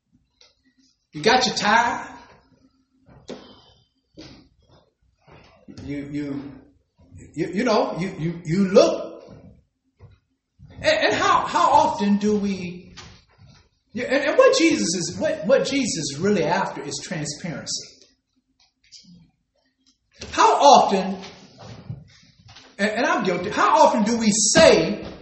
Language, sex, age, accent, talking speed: English, male, 50-69, American, 95 wpm